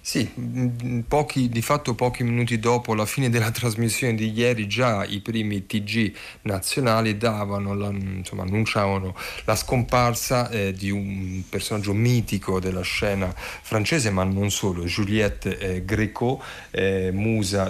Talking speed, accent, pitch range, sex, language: 135 wpm, native, 100-120 Hz, male, Italian